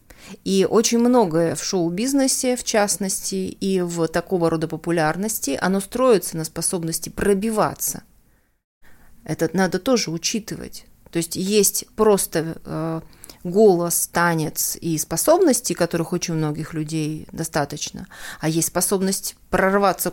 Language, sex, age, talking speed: Russian, female, 30-49, 115 wpm